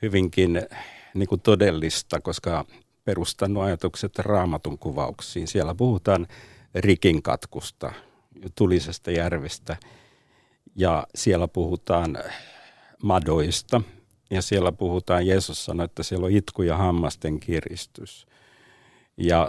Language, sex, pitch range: Finnish, male, 90-120 Hz